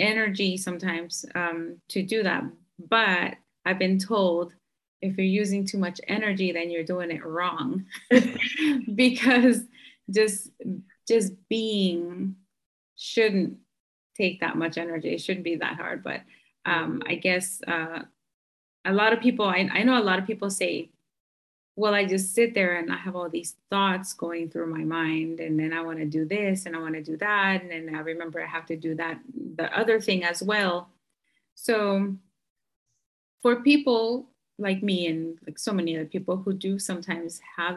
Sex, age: female, 30-49